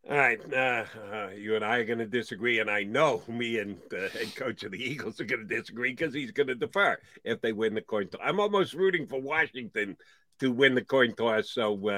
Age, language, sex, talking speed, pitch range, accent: 50-69, English, male, 245 wpm, 115-190 Hz, American